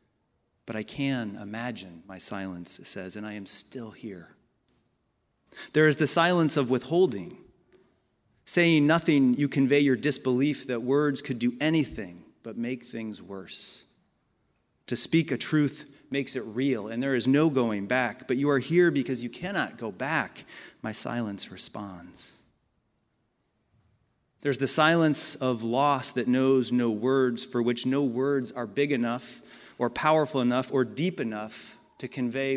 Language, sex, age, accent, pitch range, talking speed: English, male, 30-49, American, 120-140 Hz, 150 wpm